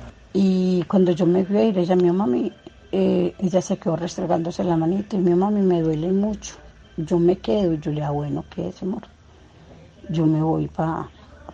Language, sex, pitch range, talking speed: Spanish, female, 160-185 Hz, 200 wpm